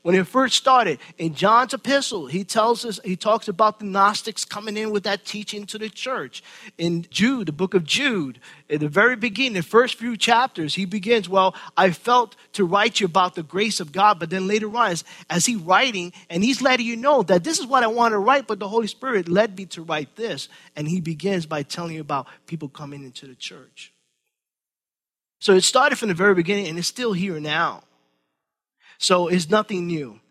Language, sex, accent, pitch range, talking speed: English, male, American, 175-225 Hz, 215 wpm